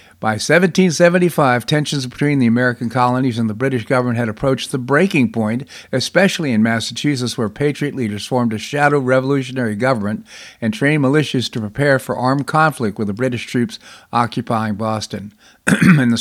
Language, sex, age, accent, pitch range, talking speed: English, male, 50-69, American, 120-145 Hz, 160 wpm